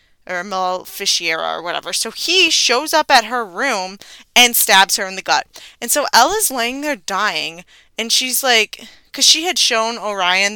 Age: 20-39